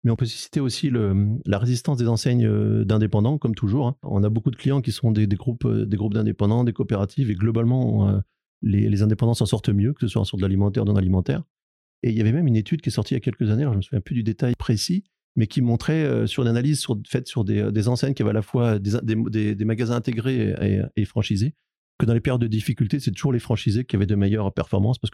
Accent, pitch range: French, 105-125 Hz